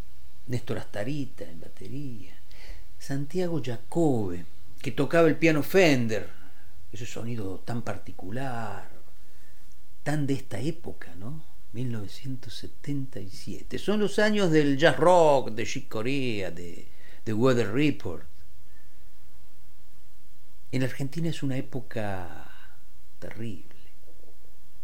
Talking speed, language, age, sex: 100 wpm, Spanish, 50-69, male